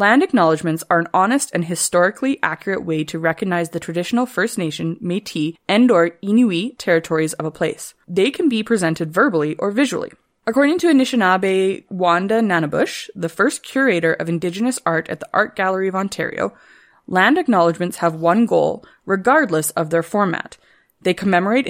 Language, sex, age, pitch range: English, female, 20-39, 170-230 Hz